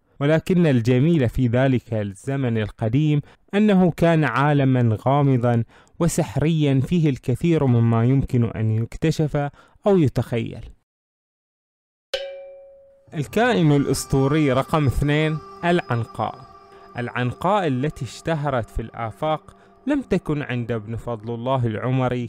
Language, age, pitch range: Arabic, 20-39, 115-155 Hz